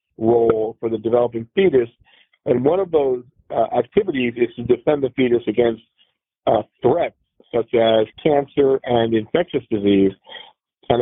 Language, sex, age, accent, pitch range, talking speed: English, male, 50-69, American, 110-130 Hz, 140 wpm